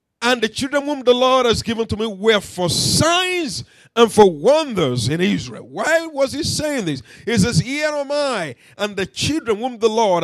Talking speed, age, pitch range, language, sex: 200 wpm, 50-69, 205-275 Hz, English, male